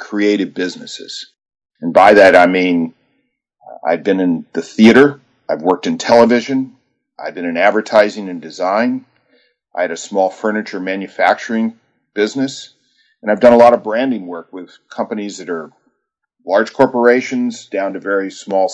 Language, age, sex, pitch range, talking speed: English, 40-59, male, 95-120 Hz, 150 wpm